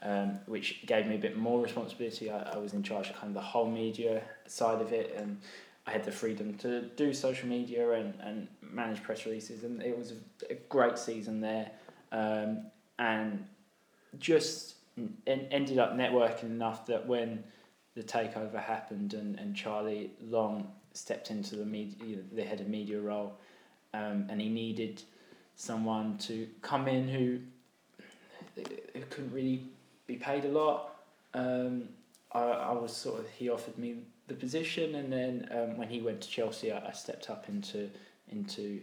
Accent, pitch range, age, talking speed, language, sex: British, 110-140 Hz, 20-39, 170 wpm, English, male